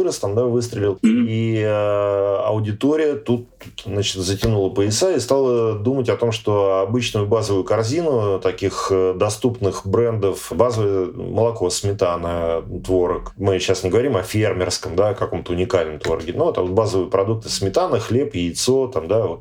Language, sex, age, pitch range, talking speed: Russian, male, 30-49, 95-120 Hz, 140 wpm